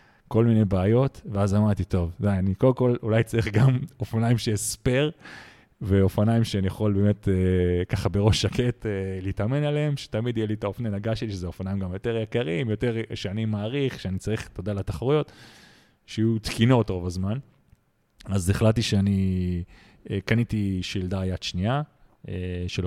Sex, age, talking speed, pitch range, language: male, 30-49, 160 wpm, 100-120 Hz, Hebrew